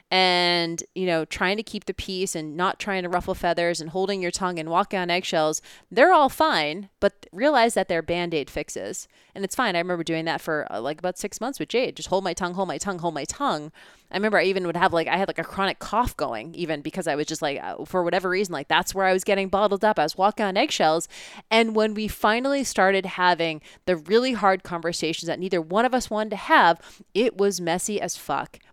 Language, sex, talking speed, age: English, female, 240 wpm, 20-39